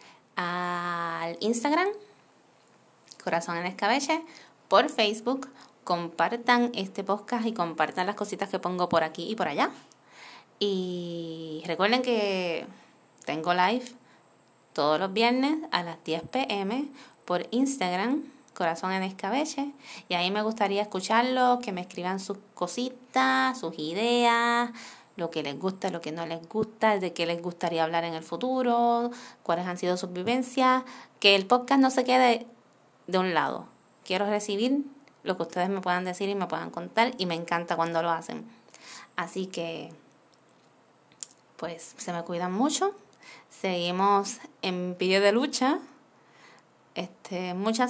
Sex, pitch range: female, 180-245 Hz